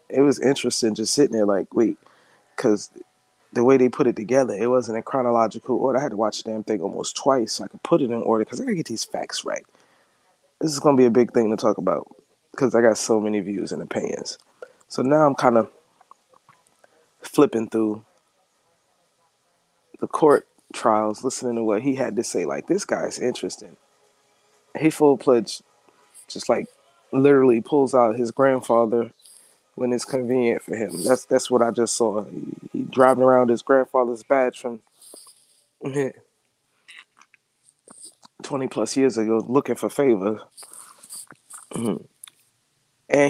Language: English